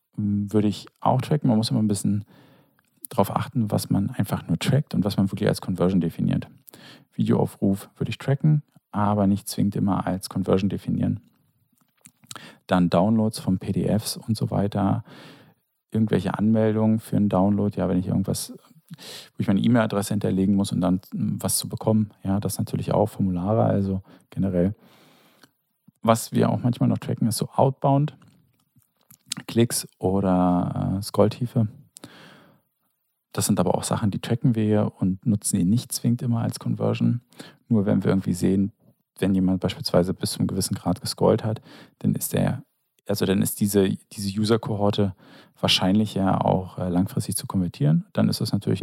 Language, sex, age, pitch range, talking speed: German, male, 40-59, 95-115 Hz, 160 wpm